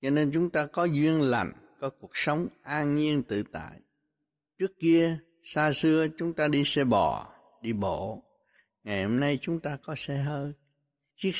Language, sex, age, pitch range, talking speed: Vietnamese, male, 60-79, 115-155 Hz, 180 wpm